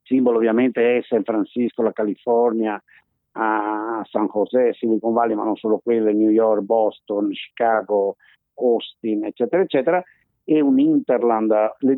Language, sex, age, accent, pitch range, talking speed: Italian, male, 50-69, native, 110-140 Hz, 130 wpm